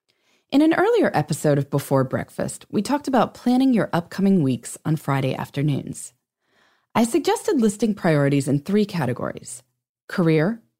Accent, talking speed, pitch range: American, 140 wpm, 140-220 Hz